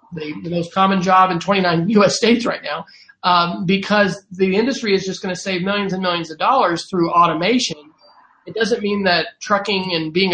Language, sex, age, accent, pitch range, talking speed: English, male, 30-49, American, 175-220 Hz, 195 wpm